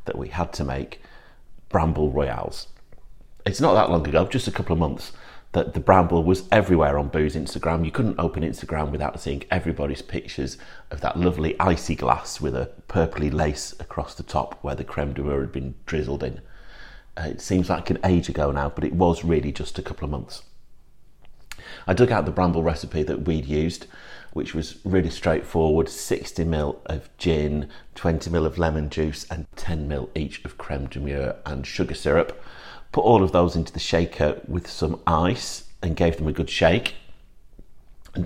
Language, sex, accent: English, male, British